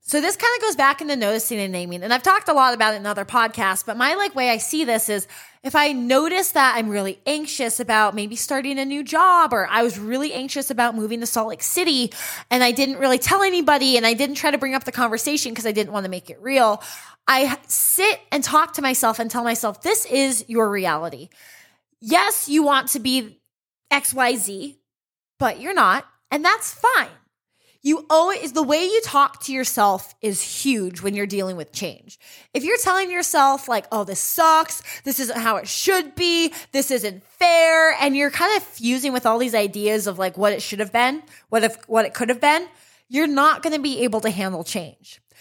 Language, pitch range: English, 225-305 Hz